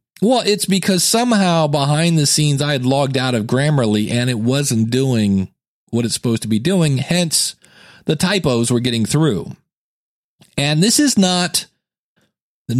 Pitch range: 145-205 Hz